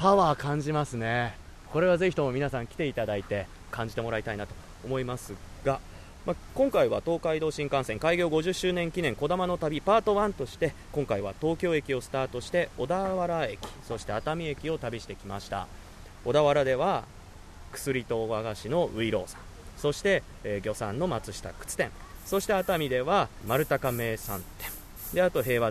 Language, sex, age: Japanese, male, 20-39